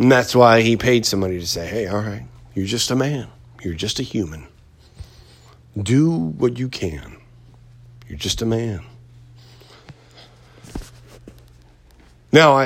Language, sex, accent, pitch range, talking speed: English, male, American, 85-120 Hz, 135 wpm